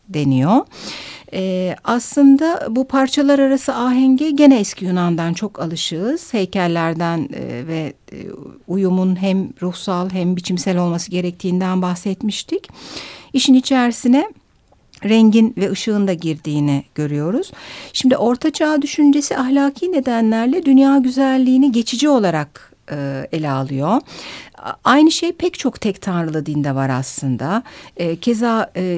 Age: 60-79